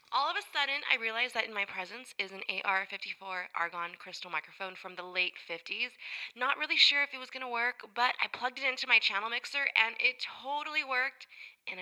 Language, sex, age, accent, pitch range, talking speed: English, female, 20-39, American, 190-255 Hz, 215 wpm